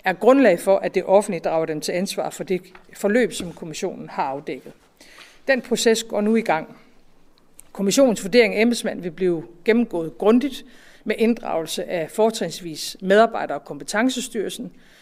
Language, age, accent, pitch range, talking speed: Danish, 50-69, native, 175-225 Hz, 150 wpm